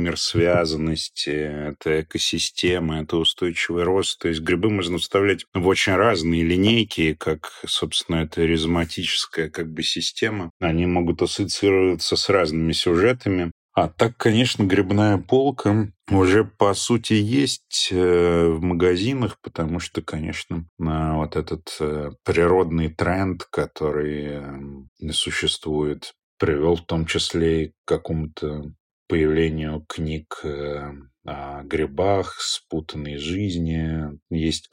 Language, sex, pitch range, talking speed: Russian, male, 80-90 Hz, 105 wpm